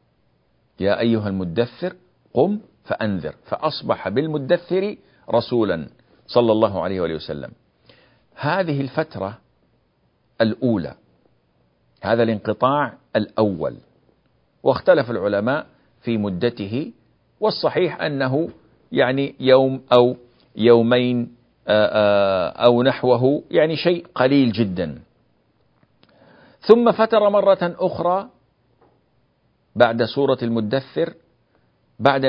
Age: 50-69